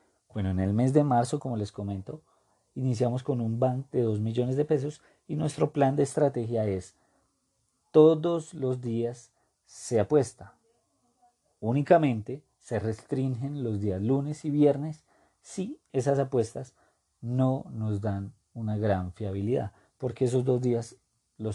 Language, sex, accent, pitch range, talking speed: Spanish, male, Colombian, 110-130 Hz, 140 wpm